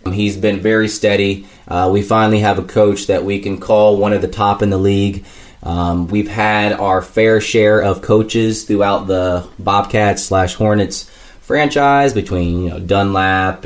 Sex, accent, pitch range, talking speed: male, American, 95-110 Hz, 170 wpm